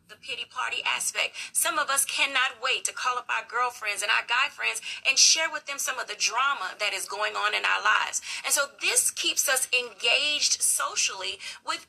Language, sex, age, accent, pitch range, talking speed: English, female, 30-49, American, 240-320 Hz, 205 wpm